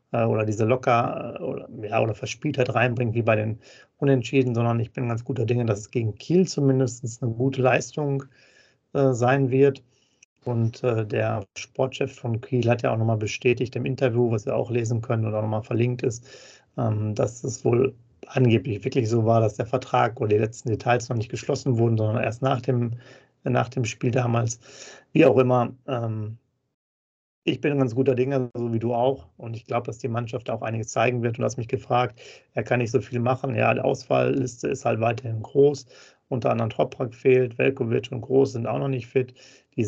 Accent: German